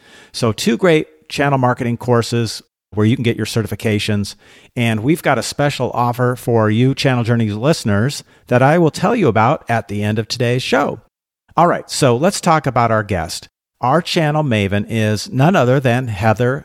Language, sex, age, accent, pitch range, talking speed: English, male, 50-69, American, 110-145 Hz, 185 wpm